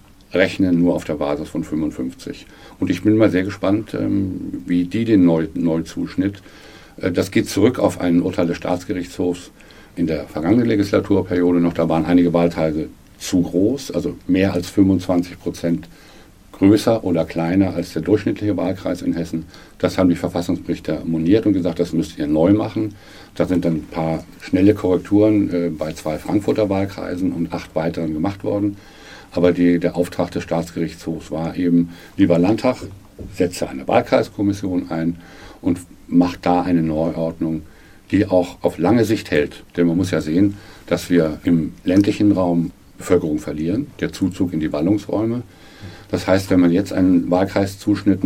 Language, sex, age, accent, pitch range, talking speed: German, male, 50-69, German, 85-100 Hz, 160 wpm